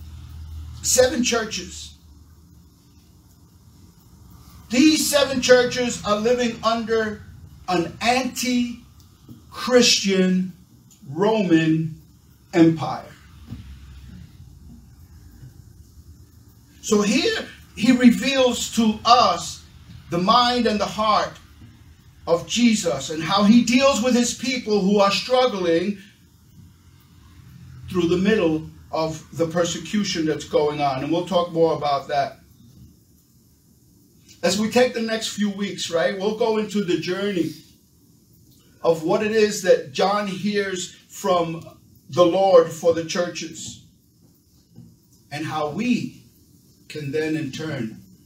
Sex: male